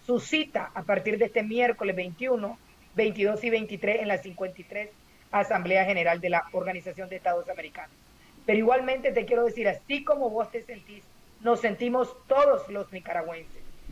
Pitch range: 195-245 Hz